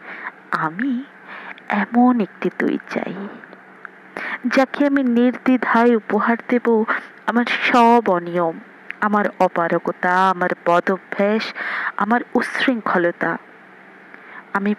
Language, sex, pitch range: Bengali, female, 190-240 Hz